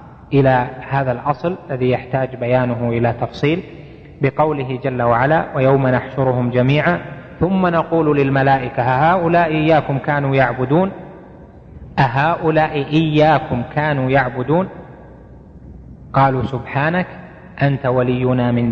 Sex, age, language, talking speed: male, 30-49, Arabic, 95 wpm